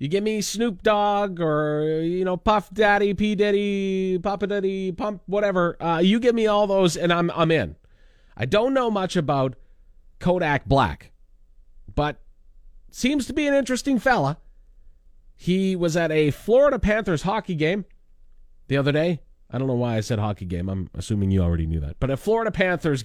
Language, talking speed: English, 180 wpm